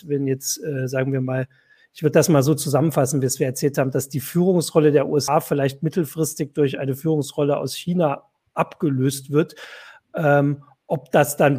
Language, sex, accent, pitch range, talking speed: German, male, German, 135-155 Hz, 180 wpm